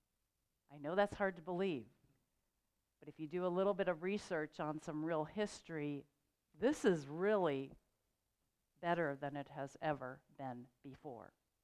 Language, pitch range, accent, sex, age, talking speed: English, 150-215 Hz, American, female, 50-69, 150 wpm